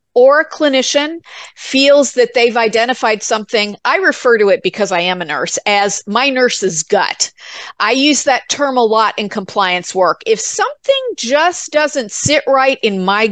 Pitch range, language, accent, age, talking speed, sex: 200-265 Hz, English, American, 40-59, 170 wpm, female